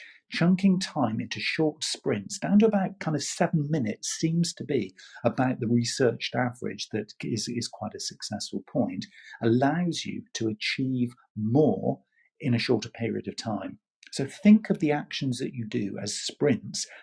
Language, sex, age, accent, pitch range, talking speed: English, male, 50-69, British, 115-155 Hz, 165 wpm